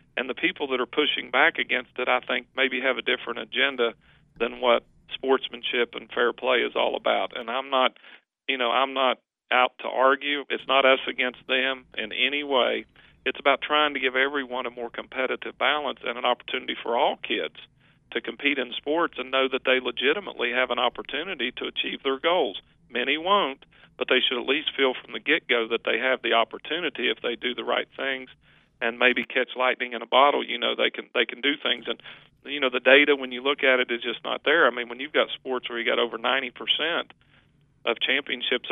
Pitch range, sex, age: 125-135 Hz, male, 40-59